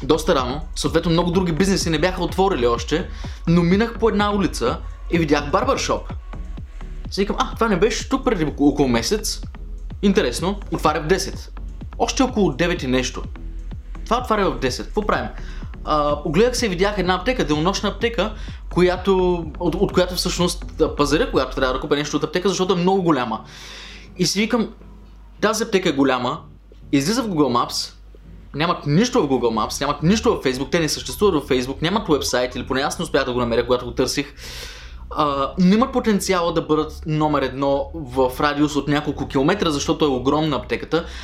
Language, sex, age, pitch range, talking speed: Bulgarian, male, 20-39, 135-190 Hz, 180 wpm